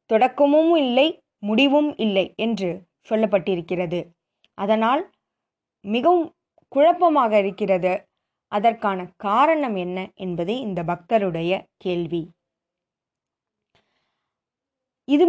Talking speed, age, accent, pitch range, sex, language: 70 wpm, 20-39, native, 195-275 Hz, female, Tamil